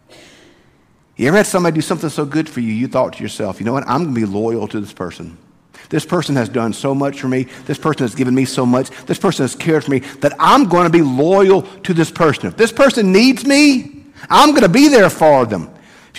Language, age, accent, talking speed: English, 50-69, American, 250 wpm